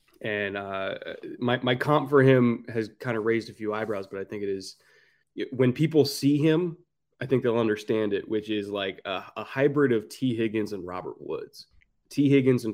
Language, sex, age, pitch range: English, male, 20-39, 110-135 Hz